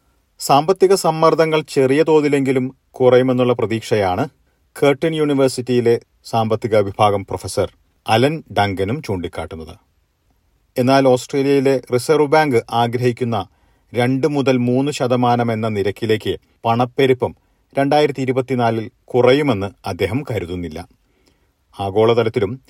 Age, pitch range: 40-59, 100-130 Hz